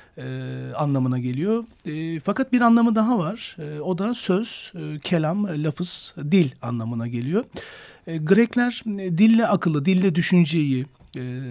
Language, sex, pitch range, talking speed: Turkish, male, 145-195 Hz, 140 wpm